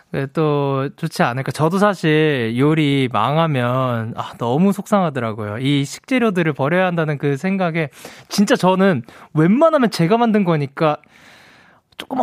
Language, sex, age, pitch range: Korean, male, 20-39, 145-210 Hz